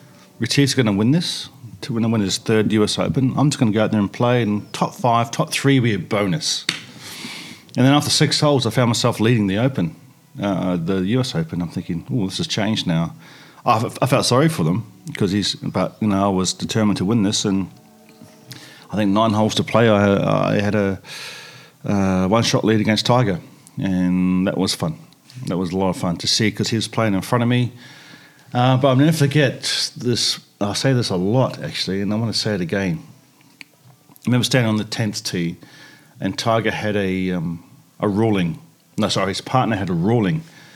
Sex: male